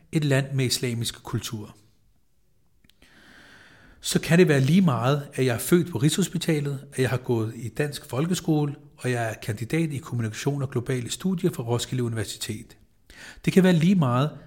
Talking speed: 170 wpm